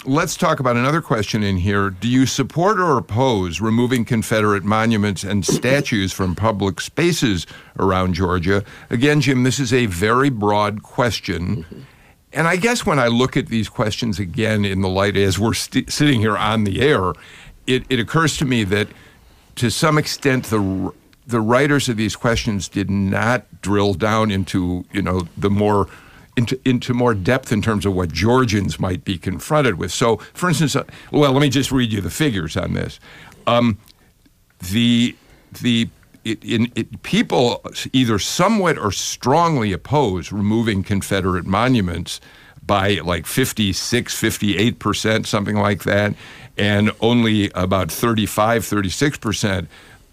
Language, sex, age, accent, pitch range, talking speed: English, male, 50-69, American, 100-125 Hz, 155 wpm